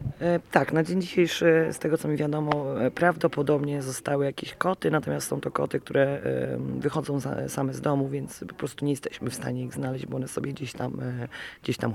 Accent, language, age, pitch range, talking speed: native, Polish, 30-49, 120-150 Hz, 185 wpm